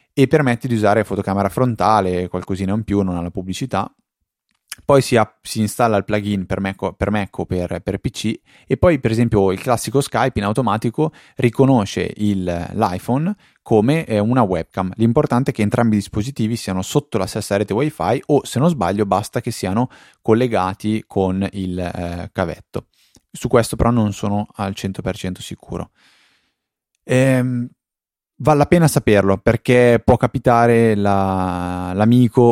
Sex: male